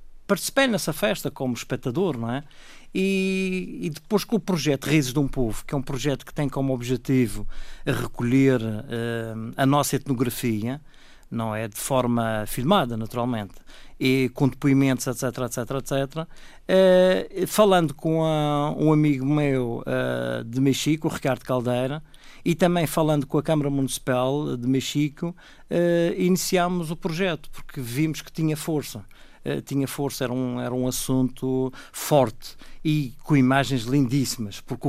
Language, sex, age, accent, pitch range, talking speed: Portuguese, male, 50-69, Portuguese, 125-150 Hz, 150 wpm